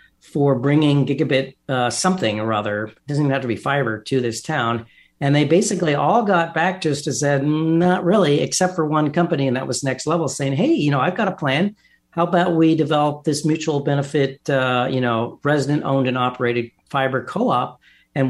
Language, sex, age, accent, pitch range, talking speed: English, male, 50-69, American, 125-160 Hz, 200 wpm